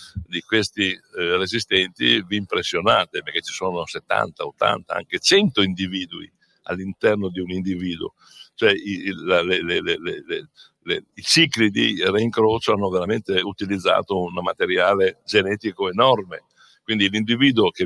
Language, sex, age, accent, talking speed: English, male, 60-79, Italian, 115 wpm